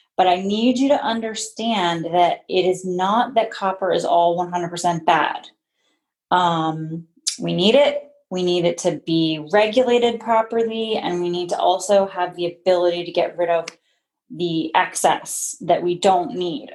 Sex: female